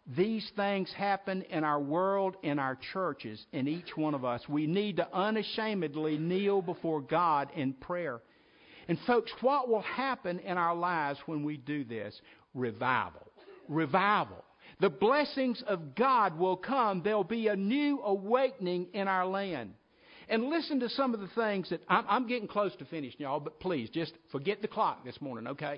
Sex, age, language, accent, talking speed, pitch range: male, 50-69, English, American, 175 wpm, 160-220 Hz